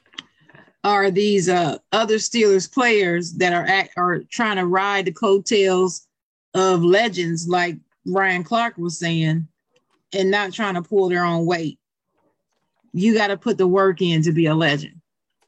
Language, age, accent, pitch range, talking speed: English, 40-59, American, 170-205 Hz, 155 wpm